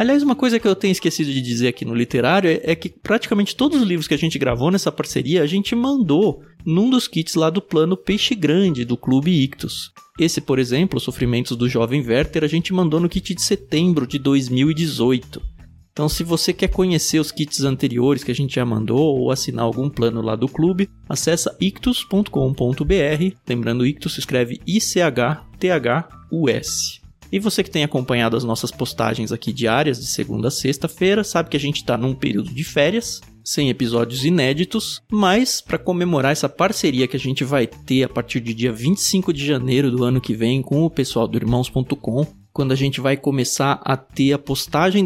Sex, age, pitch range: male, 20-39, 125-175 Hz